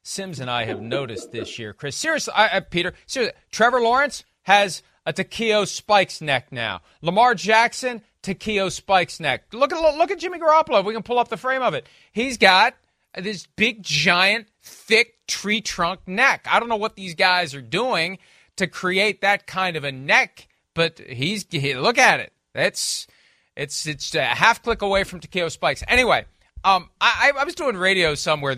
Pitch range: 175-240 Hz